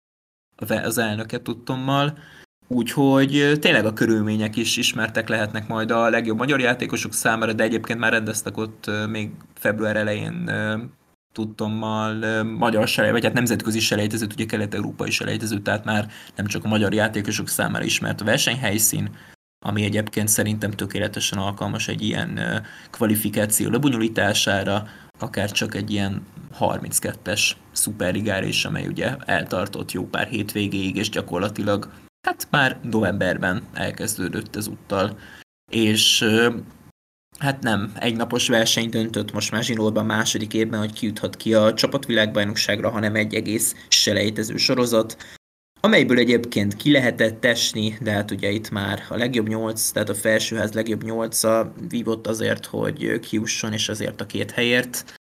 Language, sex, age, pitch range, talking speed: Hungarian, male, 20-39, 105-115 Hz, 135 wpm